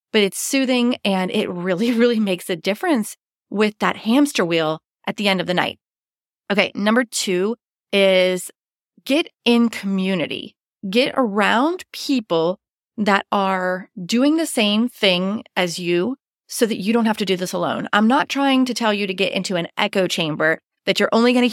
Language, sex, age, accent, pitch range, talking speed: English, female, 30-49, American, 185-230 Hz, 175 wpm